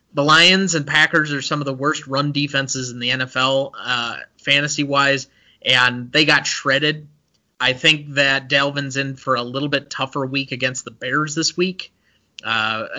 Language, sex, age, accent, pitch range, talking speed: English, male, 30-49, American, 140-170 Hz, 170 wpm